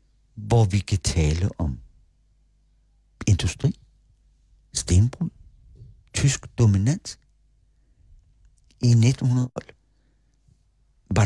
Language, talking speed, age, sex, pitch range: Danish, 65 wpm, 60-79, male, 90-115 Hz